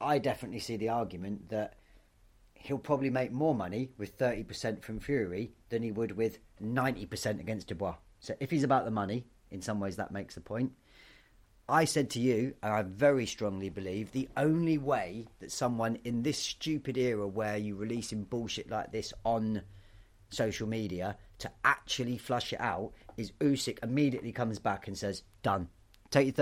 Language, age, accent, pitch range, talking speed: English, 30-49, British, 100-130 Hz, 175 wpm